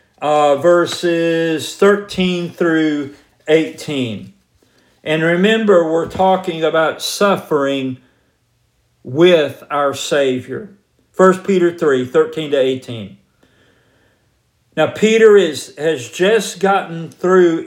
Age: 50-69